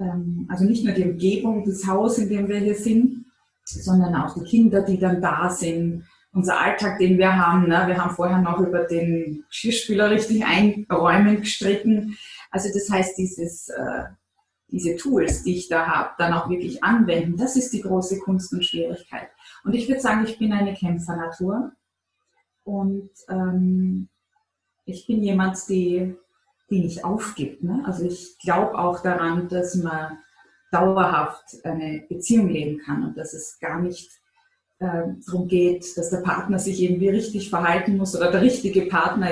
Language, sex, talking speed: German, female, 165 wpm